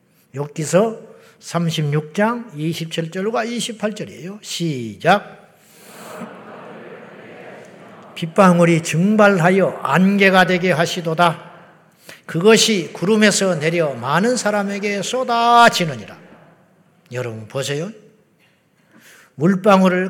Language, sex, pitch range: Korean, male, 165-210 Hz